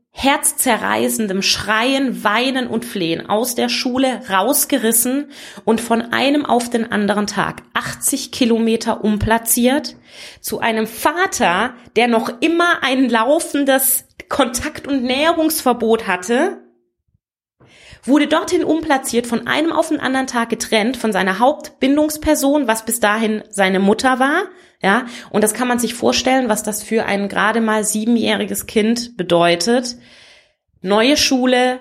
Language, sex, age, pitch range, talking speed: German, female, 20-39, 205-255 Hz, 130 wpm